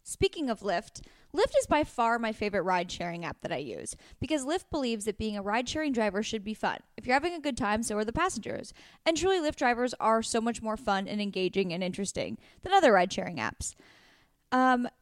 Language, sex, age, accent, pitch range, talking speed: English, female, 10-29, American, 215-290 Hz, 210 wpm